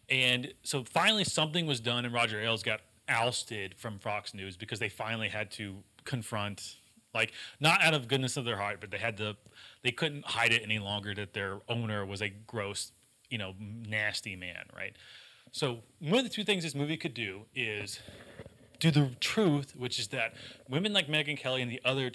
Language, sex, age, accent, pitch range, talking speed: English, male, 30-49, American, 110-135 Hz, 200 wpm